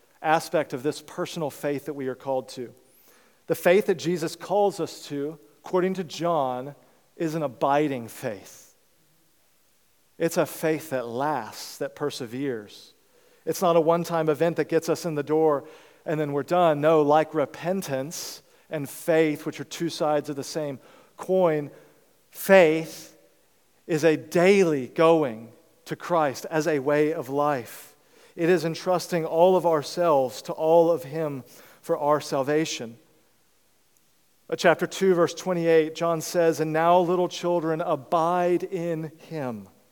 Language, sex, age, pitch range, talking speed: English, male, 40-59, 145-170 Hz, 145 wpm